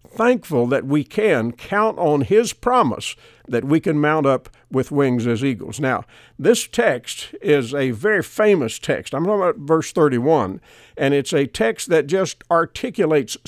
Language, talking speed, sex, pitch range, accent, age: English, 170 wpm, male, 135-195 Hz, American, 50-69